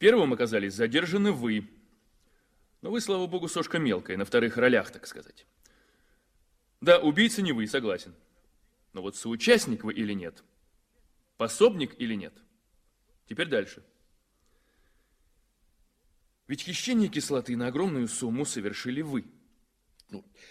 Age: 30-49